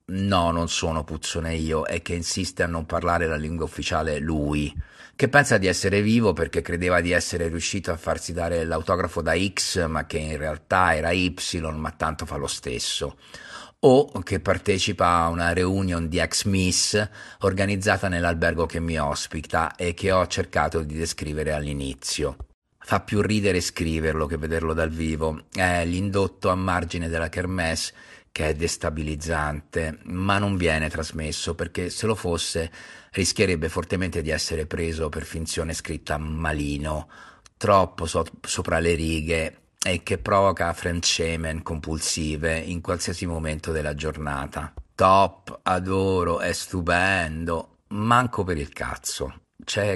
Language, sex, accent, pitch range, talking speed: Italian, male, native, 80-90 Hz, 145 wpm